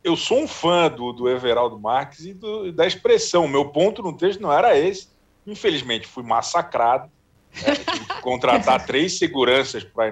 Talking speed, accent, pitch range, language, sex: 180 wpm, Brazilian, 100-125 Hz, Portuguese, male